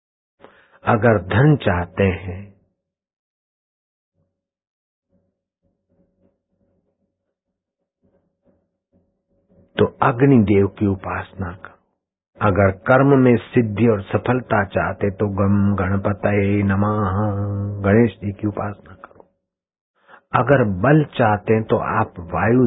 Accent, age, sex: native, 60-79, male